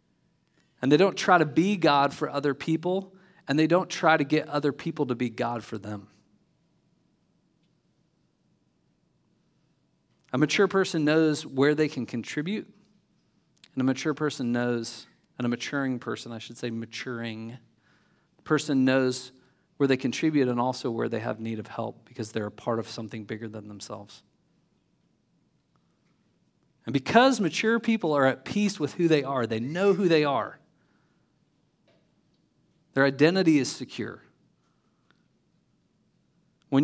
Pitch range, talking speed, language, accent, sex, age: 115-155 Hz, 140 wpm, English, American, male, 40-59